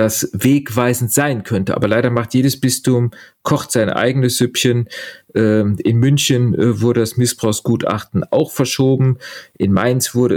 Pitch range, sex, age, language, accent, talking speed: 105-125 Hz, male, 40-59, German, German, 135 wpm